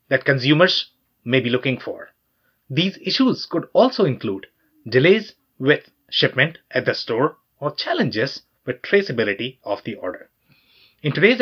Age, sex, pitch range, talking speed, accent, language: 30-49, male, 130-175 Hz, 135 wpm, Indian, English